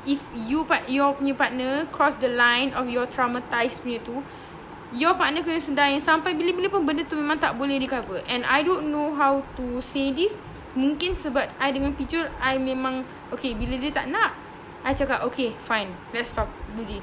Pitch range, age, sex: 265-350 Hz, 10-29, female